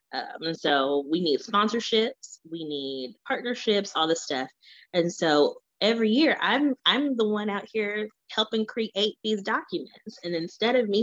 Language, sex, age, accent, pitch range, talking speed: English, female, 20-39, American, 155-215 Hz, 165 wpm